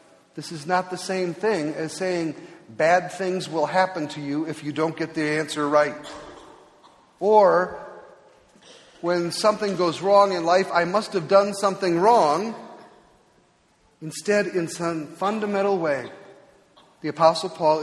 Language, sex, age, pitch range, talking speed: English, male, 40-59, 155-200 Hz, 140 wpm